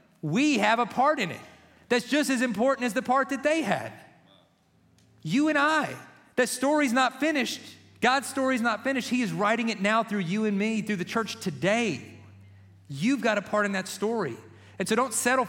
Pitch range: 140-210 Hz